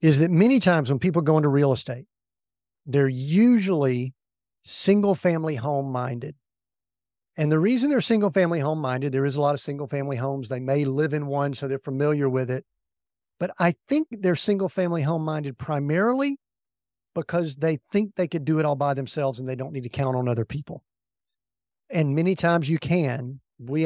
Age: 50-69